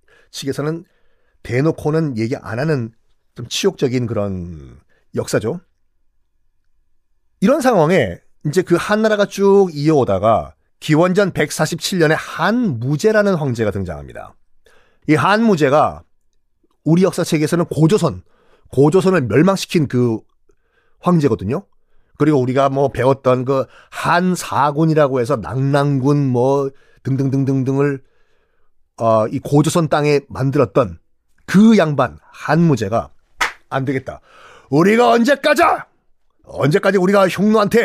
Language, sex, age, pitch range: Korean, male, 40-59, 135-200 Hz